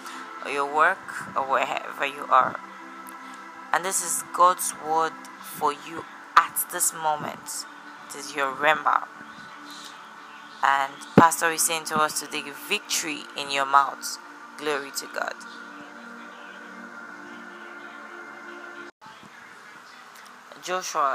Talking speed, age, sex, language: 115 wpm, 30-49, female, English